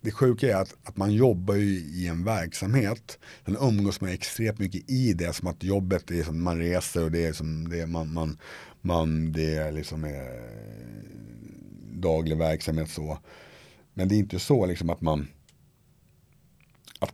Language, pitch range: Swedish, 75-95 Hz